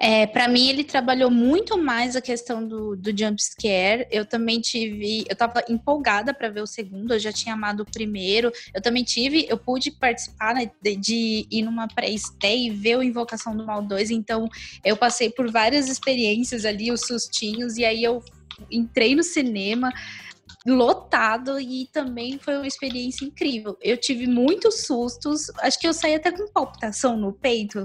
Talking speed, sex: 175 wpm, female